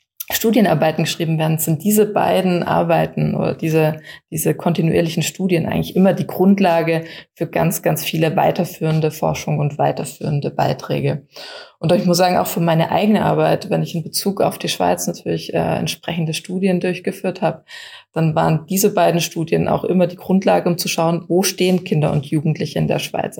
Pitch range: 165-195 Hz